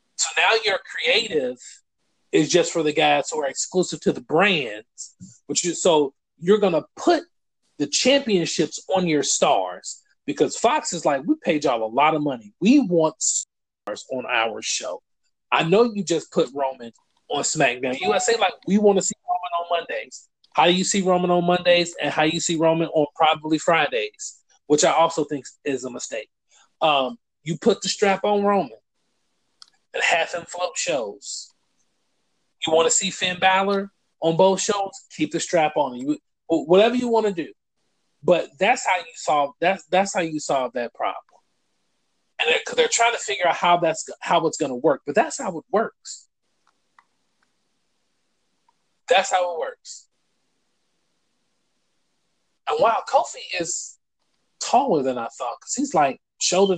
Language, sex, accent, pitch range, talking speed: English, male, American, 155-205 Hz, 170 wpm